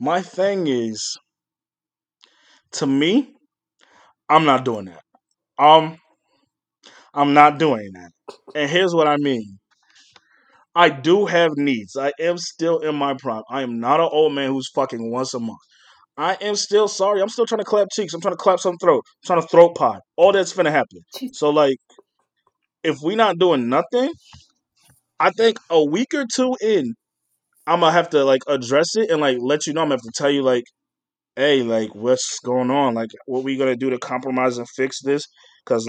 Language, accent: English, American